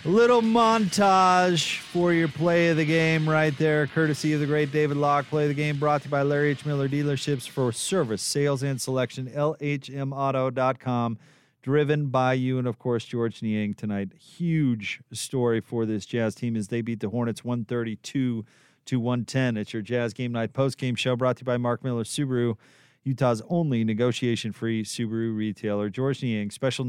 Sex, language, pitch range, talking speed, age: male, English, 115-145 Hz, 180 wpm, 40-59